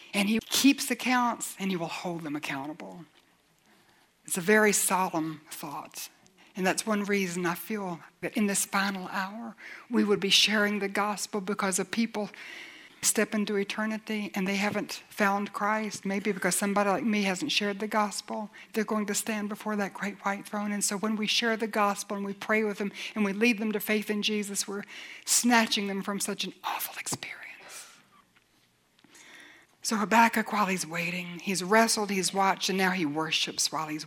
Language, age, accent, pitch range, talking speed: English, 60-79, American, 185-215 Hz, 185 wpm